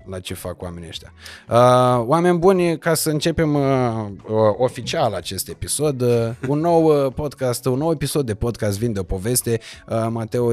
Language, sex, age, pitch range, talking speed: Romanian, male, 20-39, 100-130 Hz, 150 wpm